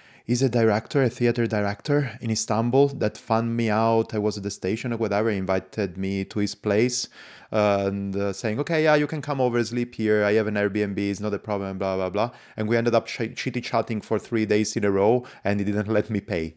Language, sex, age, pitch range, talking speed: English, male, 30-49, 105-125 Hz, 245 wpm